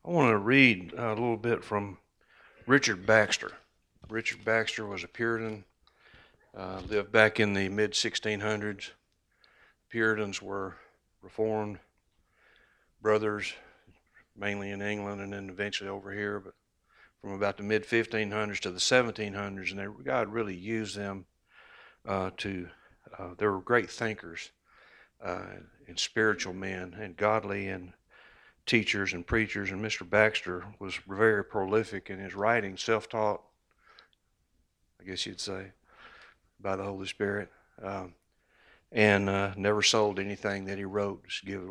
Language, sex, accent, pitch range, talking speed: English, male, American, 95-110 Hz, 135 wpm